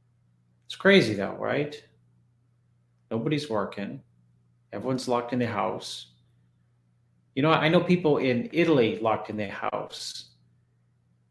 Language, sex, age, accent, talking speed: English, male, 40-59, American, 115 wpm